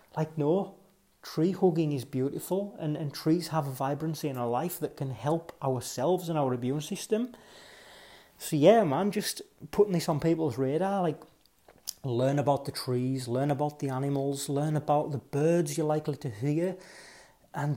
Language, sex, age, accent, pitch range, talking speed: English, male, 30-49, British, 135-165 Hz, 170 wpm